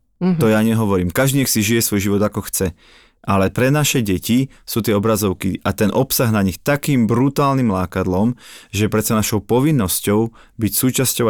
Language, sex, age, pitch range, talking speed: Slovak, male, 30-49, 105-130 Hz, 175 wpm